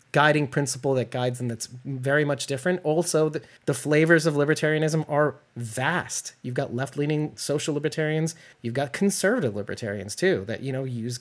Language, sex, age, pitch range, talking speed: English, male, 30-49, 125-150 Hz, 165 wpm